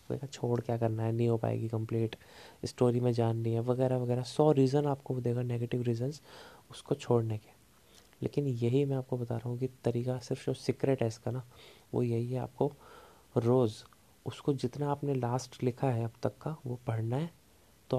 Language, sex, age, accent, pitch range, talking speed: Hindi, male, 20-39, native, 115-130 Hz, 190 wpm